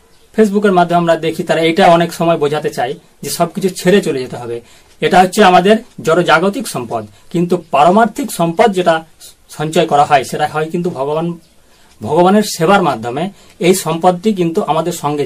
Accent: native